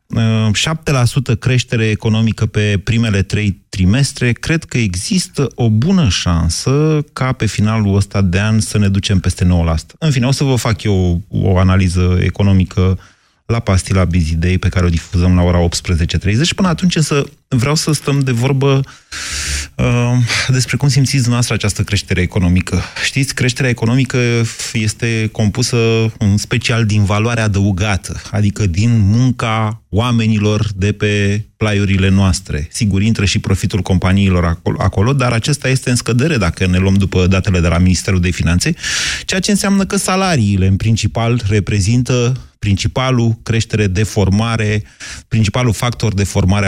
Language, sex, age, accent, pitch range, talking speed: Romanian, male, 30-49, native, 95-125 Hz, 150 wpm